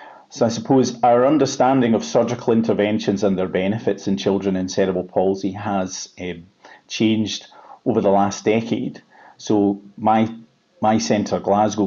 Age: 30-49